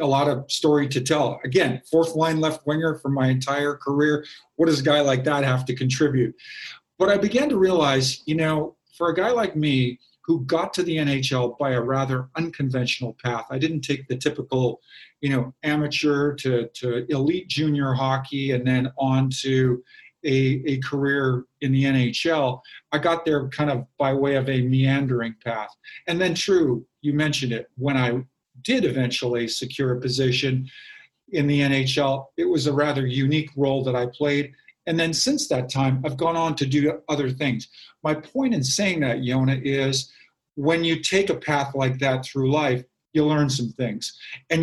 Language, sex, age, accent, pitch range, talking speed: English, male, 40-59, American, 130-155 Hz, 185 wpm